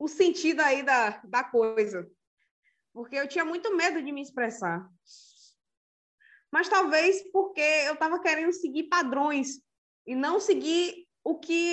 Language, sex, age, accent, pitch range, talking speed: Portuguese, female, 20-39, Brazilian, 230-340 Hz, 140 wpm